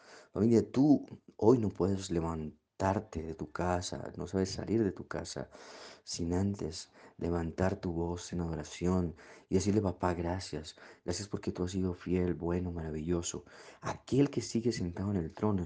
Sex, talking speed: male, 155 wpm